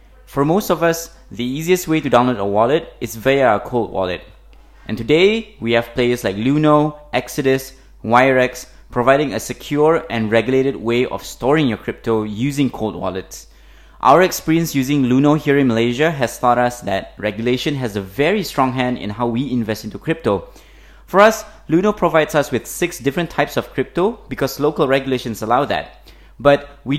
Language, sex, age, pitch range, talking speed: English, male, 20-39, 120-150 Hz, 175 wpm